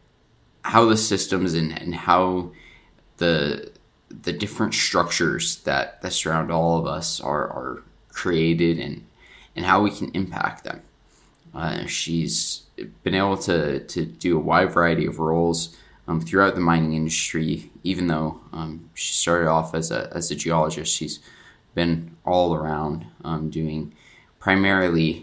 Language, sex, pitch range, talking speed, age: English, male, 80-95 Hz, 145 wpm, 20-39